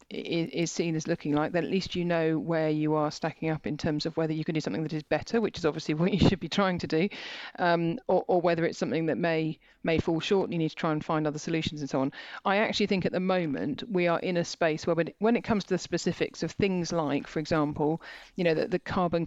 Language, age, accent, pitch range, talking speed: English, 40-59, British, 160-185 Hz, 275 wpm